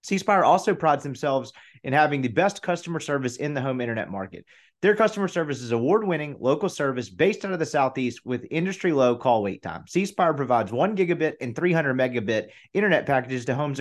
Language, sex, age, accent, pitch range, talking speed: English, male, 30-49, American, 130-185 Hz, 200 wpm